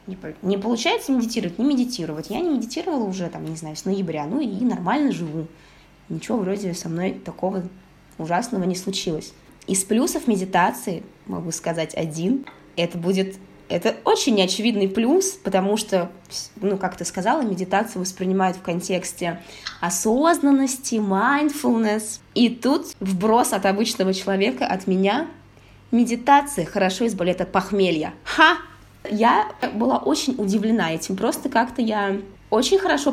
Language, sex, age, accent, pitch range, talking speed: Russian, female, 20-39, native, 185-250 Hz, 135 wpm